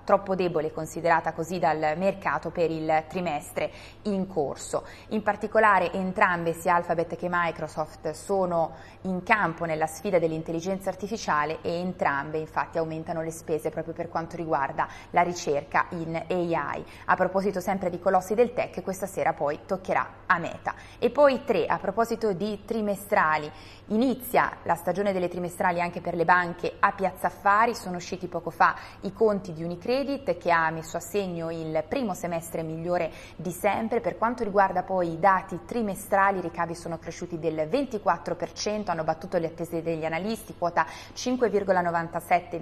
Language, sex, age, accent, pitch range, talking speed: Italian, female, 20-39, native, 165-200 Hz, 155 wpm